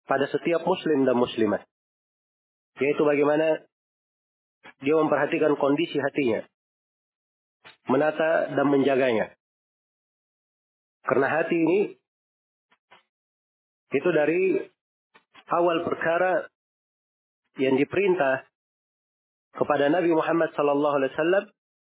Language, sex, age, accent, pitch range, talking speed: Indonesian, male, 30-49, native, 140-165 Hz, 80 wpm